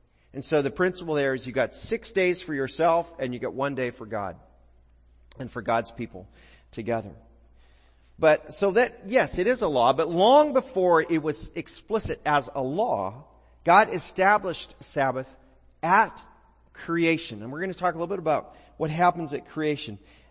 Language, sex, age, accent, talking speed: English, male, 40-59, American, 175 wpm